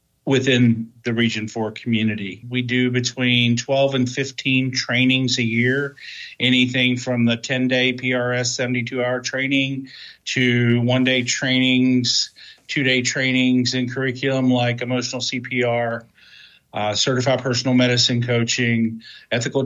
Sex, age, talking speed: male, 40-59, 125 wpm